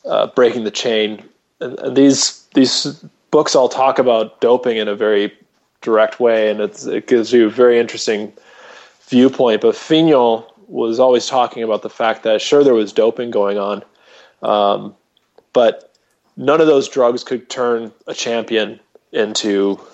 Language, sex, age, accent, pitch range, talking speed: English, male, 20-39, American, 110-170 Hz, 160 wpm